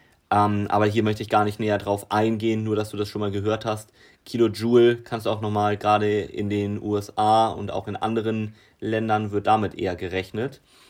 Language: German